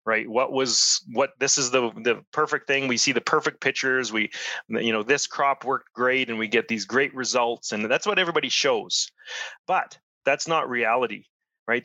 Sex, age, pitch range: male, 30-49, 115-140 Hz